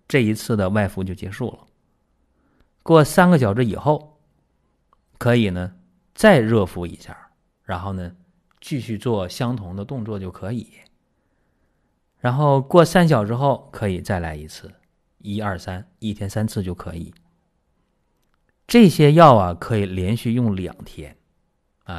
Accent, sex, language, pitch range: native, male, Chinese, 90-115 Hz